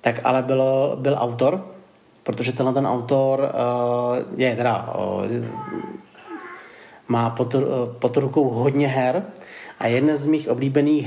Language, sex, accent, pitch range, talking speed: Czech, male, native, 120-140 Hz, 135 wpm